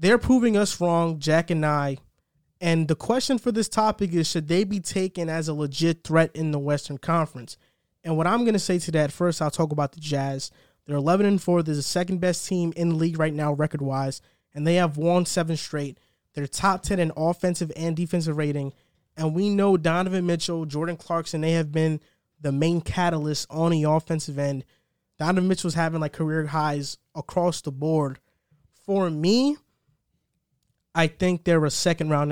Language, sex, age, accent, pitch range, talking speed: English, male, 20-39, American, 145-175 Hz, 185 wpm